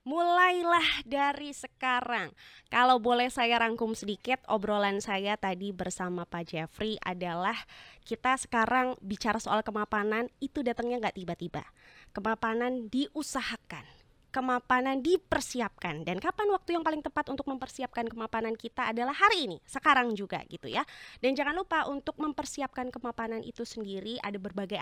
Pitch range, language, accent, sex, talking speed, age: 205-265 Hz, Indonesian, native, female, 135 wpm, 20-39